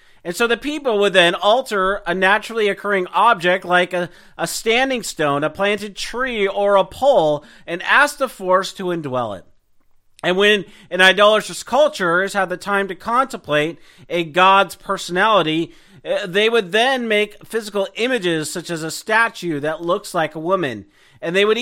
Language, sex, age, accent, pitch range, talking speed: English, male, 40-59, American, 165-210 Hz, 170 wpm